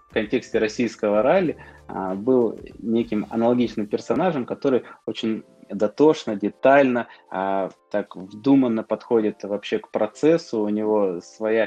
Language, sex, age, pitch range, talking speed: Russian, male, 20-39, 105-125 Hz, 120 wpm